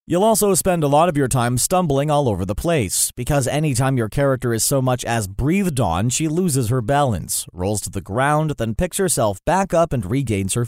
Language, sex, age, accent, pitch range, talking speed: English, male, 40-59, American, 115-160 Hz, 225 wpm